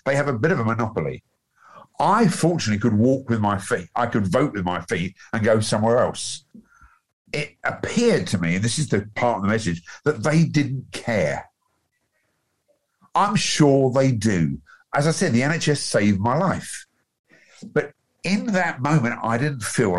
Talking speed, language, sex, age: 175 wpm, English, male, 50-69